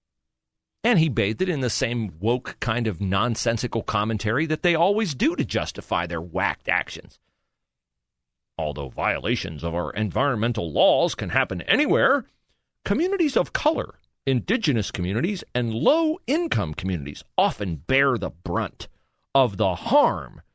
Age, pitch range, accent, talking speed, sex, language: 40-59, 85-135 Hz, American, 130 wpm, male, English